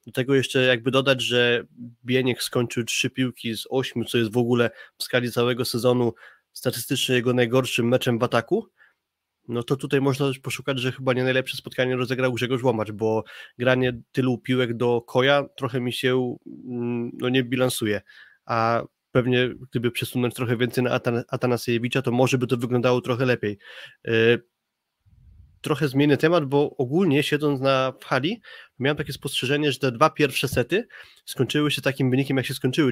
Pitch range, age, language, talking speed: 125-140 Hz, 20-39, Polish, 170 wpm